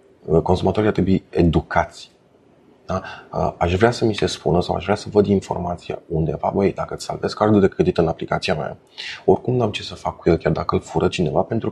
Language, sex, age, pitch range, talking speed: Romanian, male, 30-49, 80-95 Hz, 215 wpm